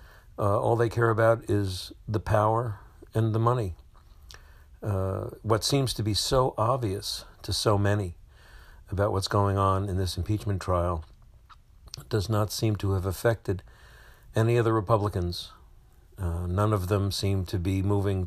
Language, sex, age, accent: English, male, 60-79, American